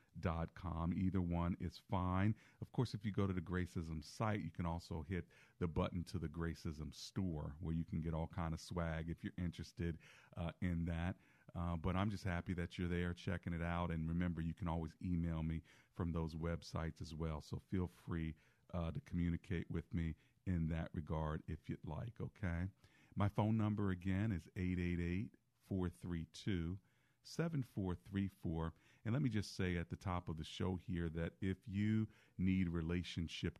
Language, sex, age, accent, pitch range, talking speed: English, male, 40-59, American, 85-105 Hz, 180 wpm